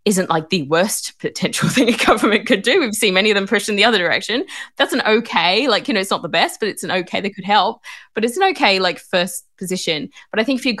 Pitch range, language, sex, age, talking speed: 150-190 Hz, English, female, 20-39, 270 wpm